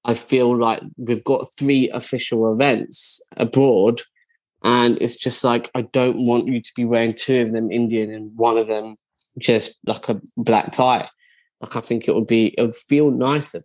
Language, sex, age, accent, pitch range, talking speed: English, male, 10-29, British, 115-135 Hz, 190 wpm